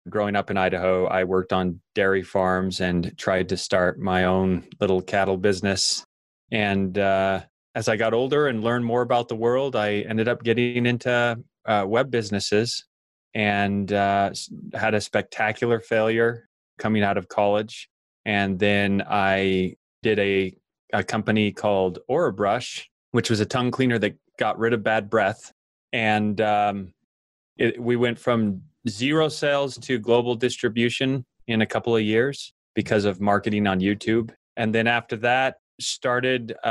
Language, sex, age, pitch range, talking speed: English, male, 20-39, 100-120 Hz, 155 wpm